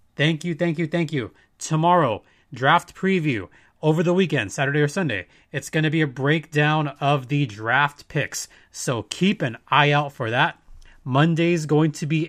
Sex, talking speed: male, 175 wpm